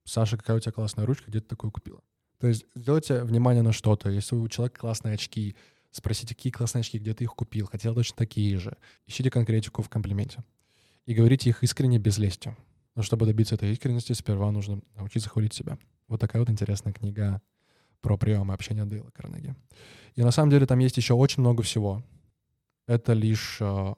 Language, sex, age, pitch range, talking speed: Russian, male, 20-39, 105-120 Hz, 190 wpm